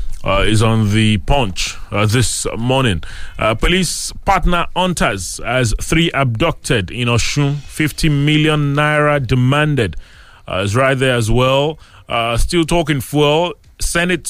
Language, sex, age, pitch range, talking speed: English, male, 30-49, 120-160 Hz, 135 wpm